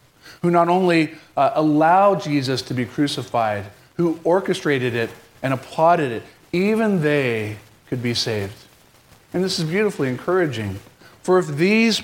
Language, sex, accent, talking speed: English, male, American, 140 wpm